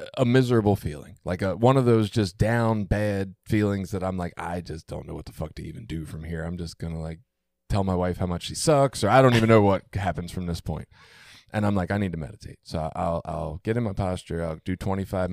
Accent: American